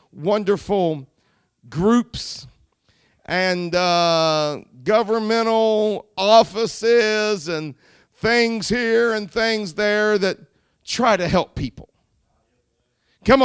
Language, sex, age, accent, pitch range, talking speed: English, male, 50-69, American, 135-180 Hz, 80 wpm